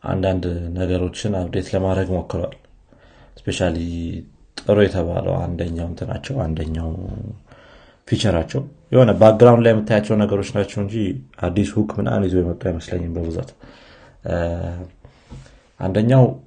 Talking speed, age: 105 wpm, 30-49